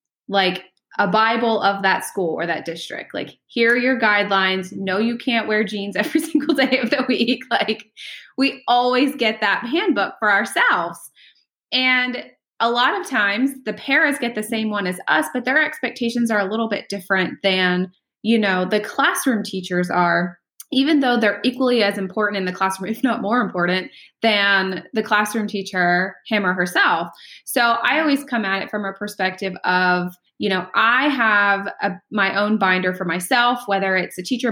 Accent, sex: American, female